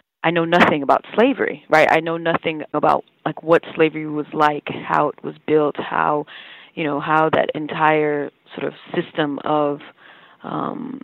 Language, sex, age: English, female, 20-39